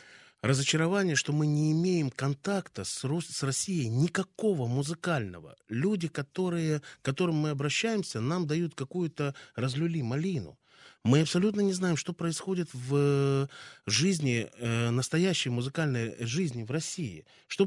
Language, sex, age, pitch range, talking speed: Russian, male, 20-39, 120-160 Hz, 110 wpm